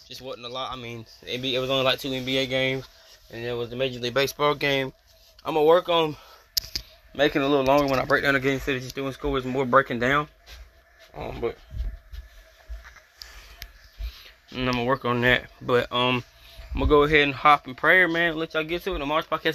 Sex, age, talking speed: male, 10-29, 215 wpm